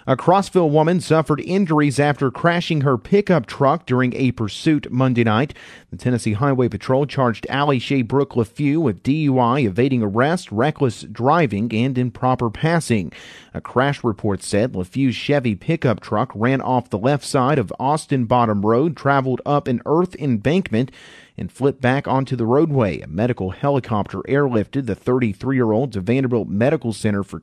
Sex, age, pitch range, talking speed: male, 40-59, 115-155 Hz, 160 wpm